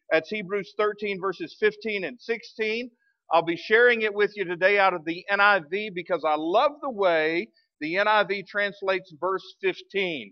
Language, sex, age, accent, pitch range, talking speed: English, male, 50-69, American, 190-255 Hz, 165 wpm